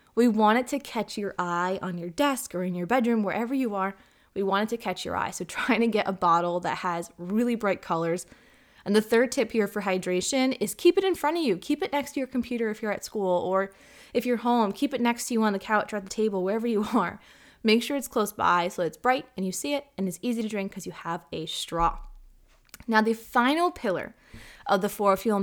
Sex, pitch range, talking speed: female, 190-245 Hz, 255 wpm